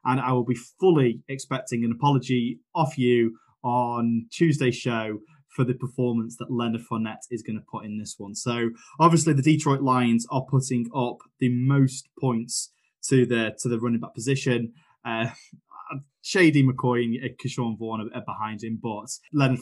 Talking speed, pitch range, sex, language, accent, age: 170 wpm, 115-140 Hz, male, English, British, 20-39